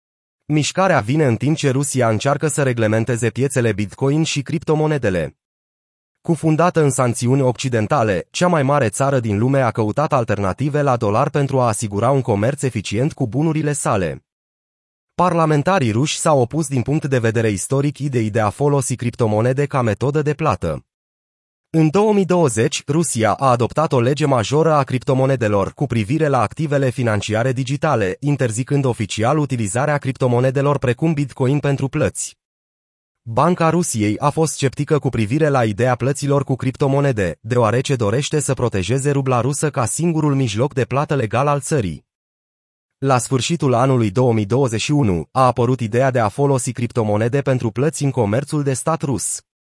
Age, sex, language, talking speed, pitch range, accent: 30-49, male, Romanian, 150 wpm, 115-145 Hz, native